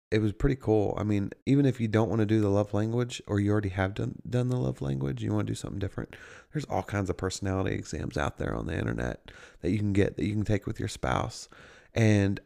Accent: American